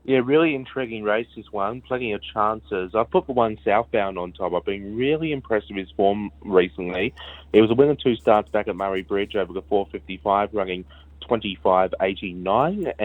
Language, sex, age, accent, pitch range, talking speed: English, male, 20-39, Australian, 90-105 Hz, 185 wpm